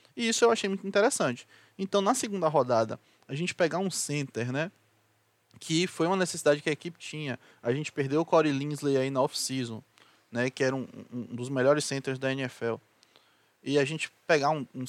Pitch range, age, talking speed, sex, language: 130-175 Hz, 20-39, 200 wpm, male, Portuguese